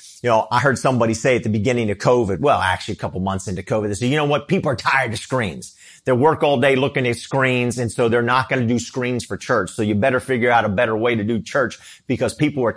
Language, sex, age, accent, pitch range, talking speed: English, male, 40-59, American, 110-145 Hz, 275 wpm